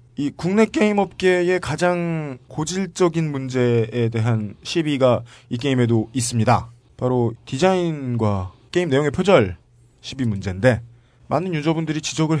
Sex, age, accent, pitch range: male, 40-59, native, 120-160 Hz